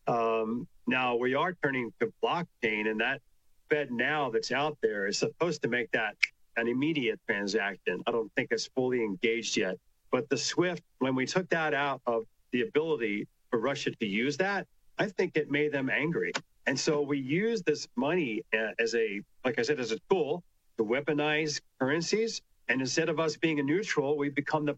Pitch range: 120-155 Hz